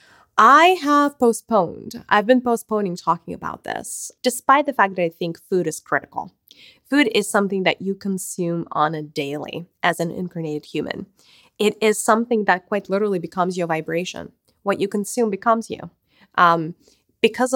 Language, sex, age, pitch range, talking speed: English, female, 20-39, 175-235 Hz, 160 wpm